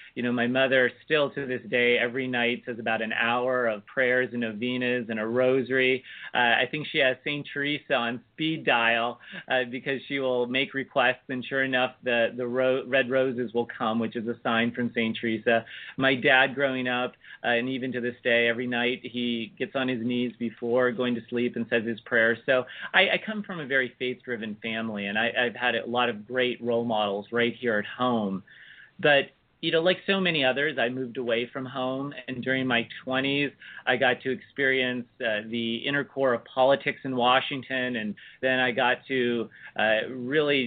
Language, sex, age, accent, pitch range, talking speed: English, male, 40-59, American, 120-135 Hz, 200 wpm